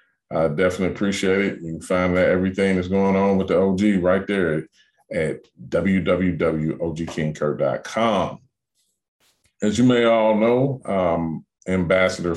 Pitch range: 90-115 Hz